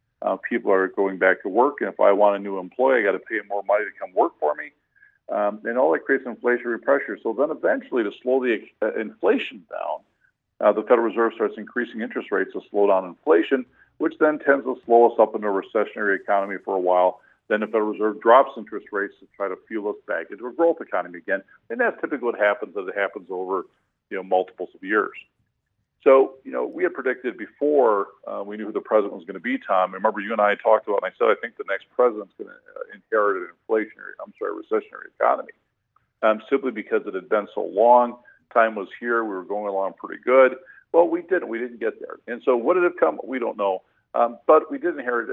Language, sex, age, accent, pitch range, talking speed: English, male, 50-69, American, 105-170 Hz, 235 wpm